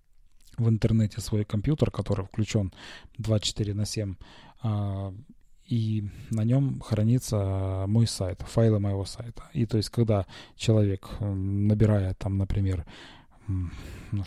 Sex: male